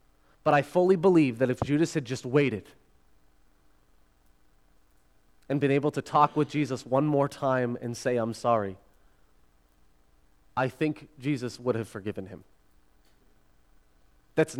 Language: English